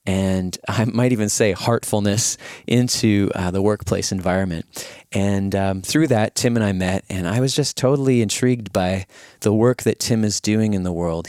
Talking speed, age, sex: 185 wpm, 30-49, male